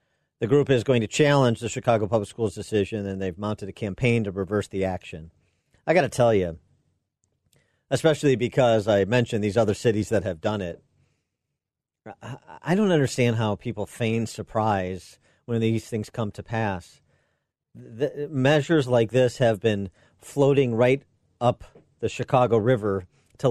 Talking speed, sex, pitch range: 160 wpm, male, 105-125 Hz